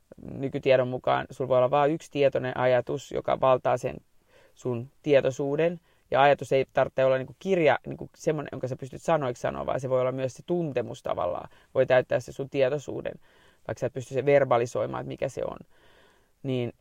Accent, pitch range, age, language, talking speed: native, 130-160 Hz, 30-49, Finnish, 185 wpm